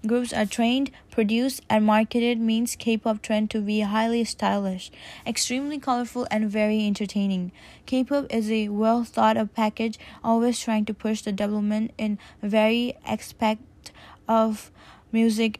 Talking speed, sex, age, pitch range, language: 130 wpm, female, 20-39, 210-235 Hz, English